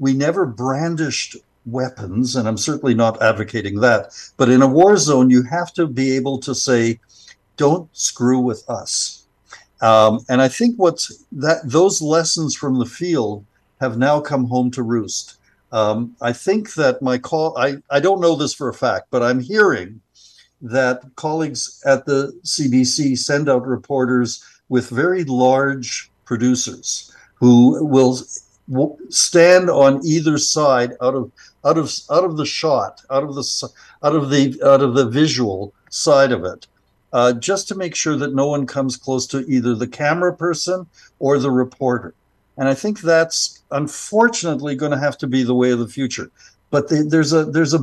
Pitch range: 125-150 Hz